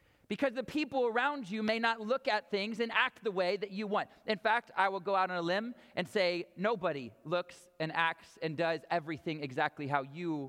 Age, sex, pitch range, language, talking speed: 40-59, male, 165-220 Hz, English, 215 wpm